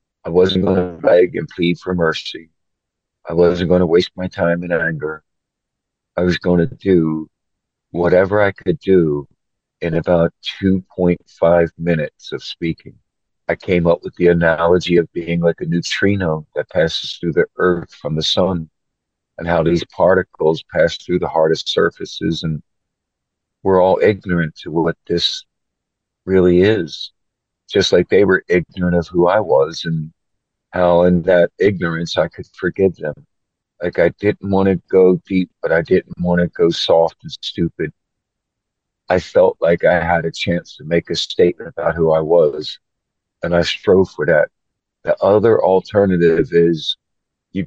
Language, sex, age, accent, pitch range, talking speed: English, male, 50-69, American, 85-95 Hz, 160 wpm